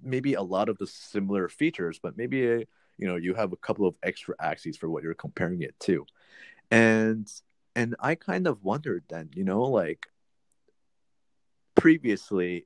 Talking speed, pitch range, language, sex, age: 165 wpm, 90-110 Hz, English, male, 30-49